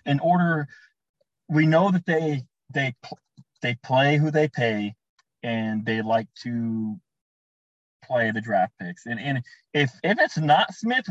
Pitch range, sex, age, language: 115-150 Hz, male, 20-39, English